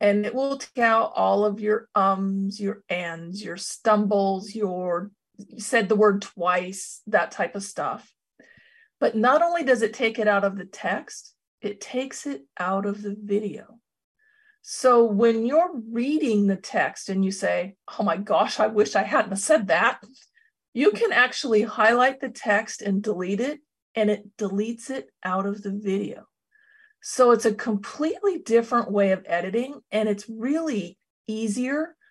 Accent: American